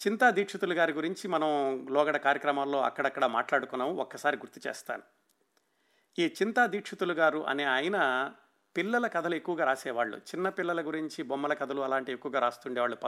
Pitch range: 140-180 Hz